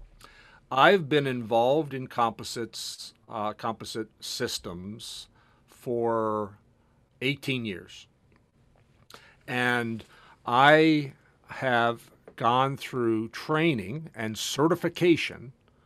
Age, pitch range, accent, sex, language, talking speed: 50-69, 115-135 Hz, American, male, English, 70 wpm